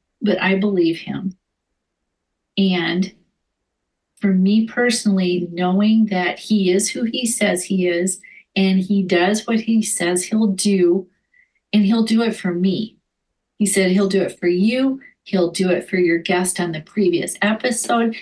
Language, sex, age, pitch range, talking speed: English, female, 40-59, 180-205 Hz, 160 wpm